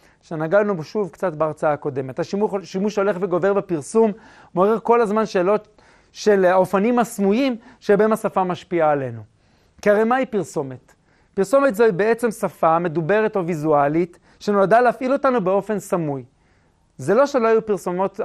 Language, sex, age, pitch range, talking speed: Hebrew, male, 40-59, 175-225 Hz, 135 wpm